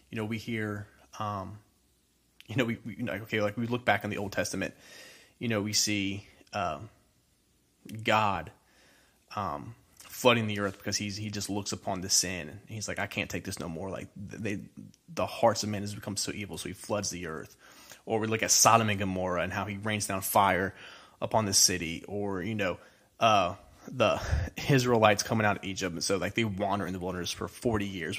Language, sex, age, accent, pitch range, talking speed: English, male, 20-39, American, 95-110 Hz, 205 wpm